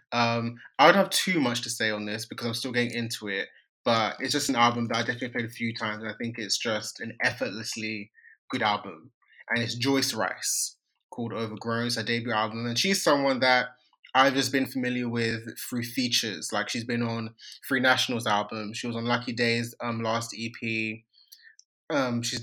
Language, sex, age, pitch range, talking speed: English, male, 20-39, 115-125 Hz, 200 wpm